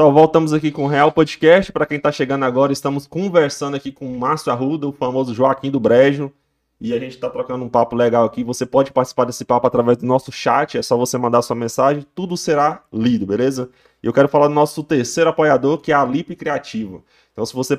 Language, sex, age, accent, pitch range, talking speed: Portuguese, male, 20-39, Brazilian, 130-160 Hz, 230 wpm